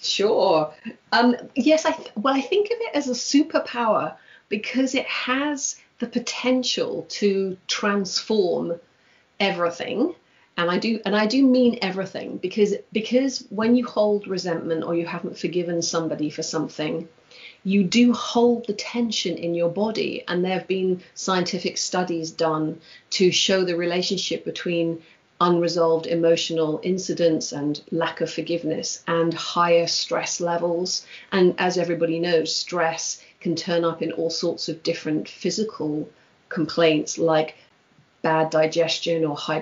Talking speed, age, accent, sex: 140 wpm, 40-59, British, female